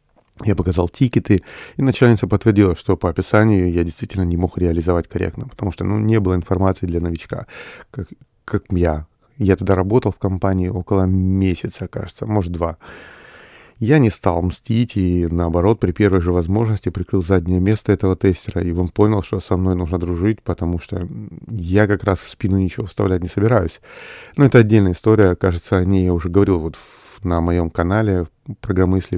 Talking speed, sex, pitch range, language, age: 175 wpm, male, 90-105 Hz, Russian, 30-49